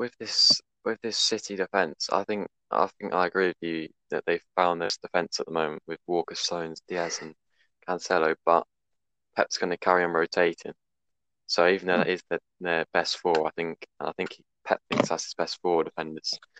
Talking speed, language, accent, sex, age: 200 wpm, English, British, male, 20-39